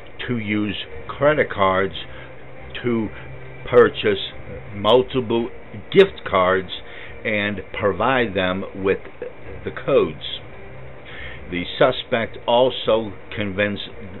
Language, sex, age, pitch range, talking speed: English, male, 60-79, 90-115 Hz, 80 wpm